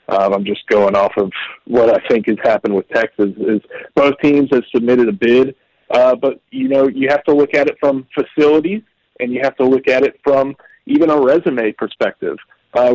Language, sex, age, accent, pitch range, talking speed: English, male, 40-59, American, 115-145 Hz, 210 wpm